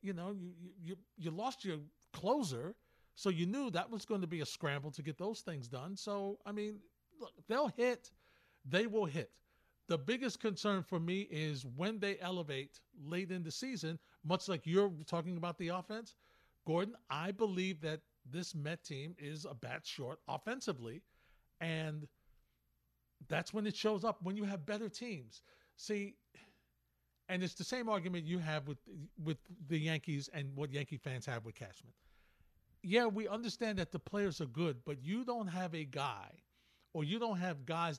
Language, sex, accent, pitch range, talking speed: English, male, American, 150-205 Hz, 180 wpm